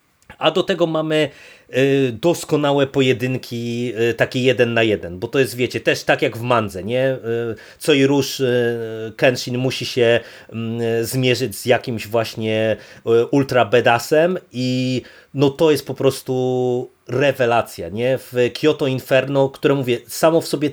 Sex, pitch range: male, 120-145 Hz